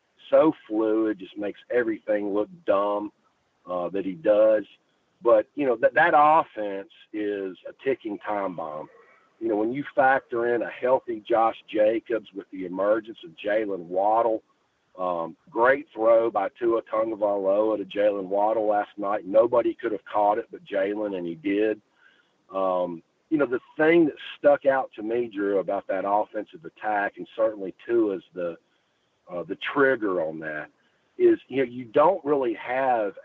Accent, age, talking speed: American, 40-59, 165 wpm